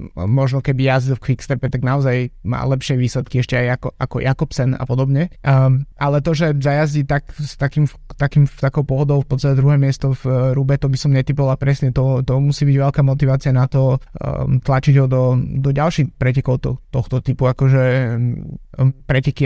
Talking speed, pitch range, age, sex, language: 185 wpm, 125-140 Hz, 20-39, male, Slovak